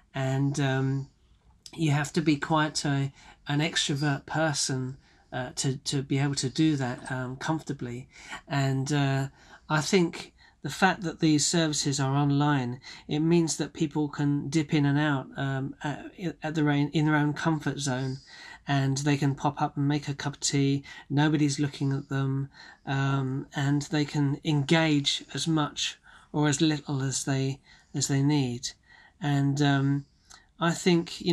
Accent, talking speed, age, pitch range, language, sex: British, 165 wpm, 40-59, 135-150 Hz, English, male